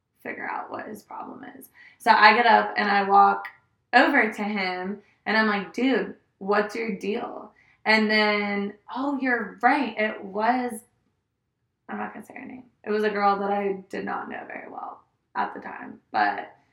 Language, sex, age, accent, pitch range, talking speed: English, female, 20-39, American, 195-220 Hz, 185 wpm